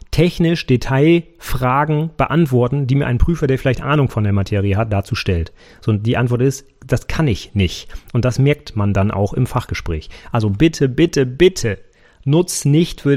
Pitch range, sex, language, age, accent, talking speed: 120-155 Hz, male, German, 30-49, German, 180 wpm